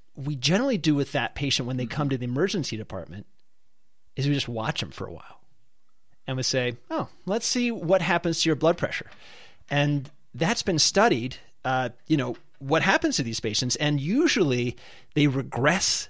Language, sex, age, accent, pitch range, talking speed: English, male, 30-49, American, 120-160 Hz, 185 wpm